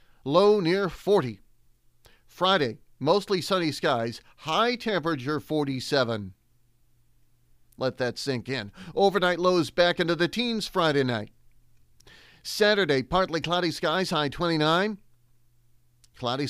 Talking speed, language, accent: 105 wpm, English, American